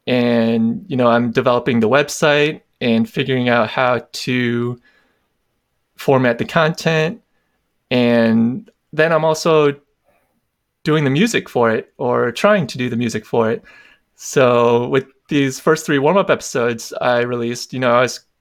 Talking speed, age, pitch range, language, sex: 145 wpm, 20-39, 120-155 Hz, English, male